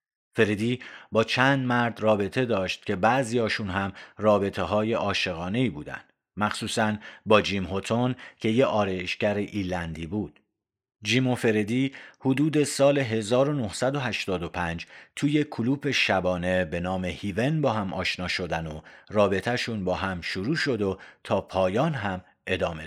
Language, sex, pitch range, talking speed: Persian, male, 95-125 Hz, 130 wpm